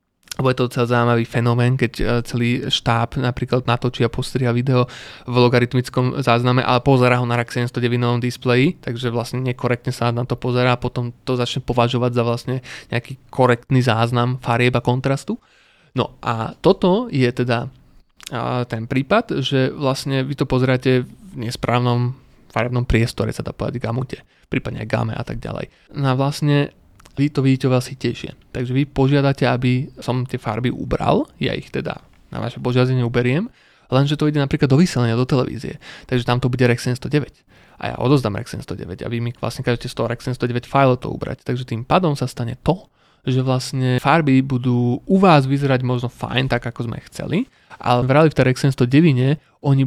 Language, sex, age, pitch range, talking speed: Slovak, male, 20-39, 120-135 Hz, 180 wpm